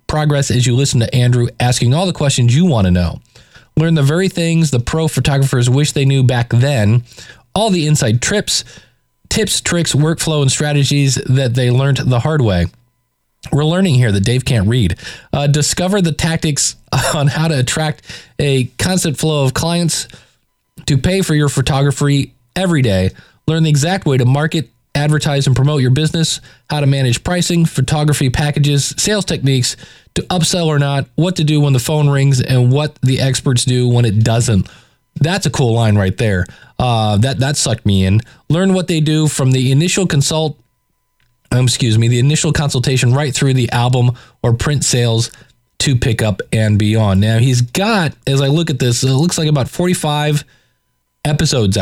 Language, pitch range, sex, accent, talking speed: English, 125-155 Hz, male, American, 185 wpm